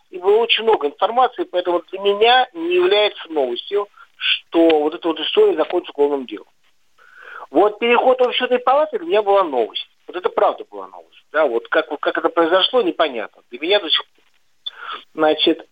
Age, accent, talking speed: 50-69, native, 175 wpm